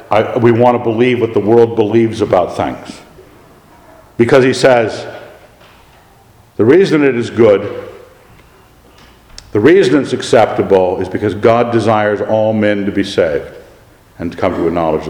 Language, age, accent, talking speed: English, 50-69, American, 145 wpm